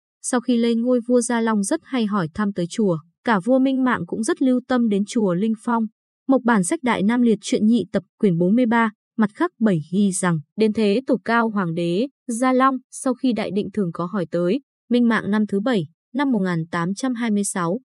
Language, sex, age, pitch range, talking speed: Vietnamese, female, 20-39, 185-245 Hz, 215 wpm